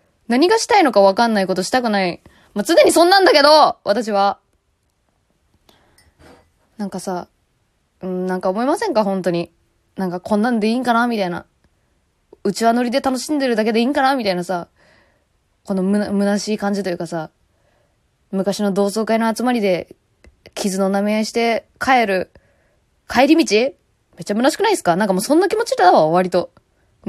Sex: female